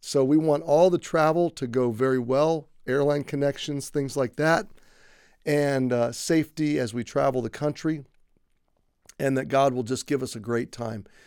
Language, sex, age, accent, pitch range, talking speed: English, male, 40-59, American, 125-155 Hz, 175 wpm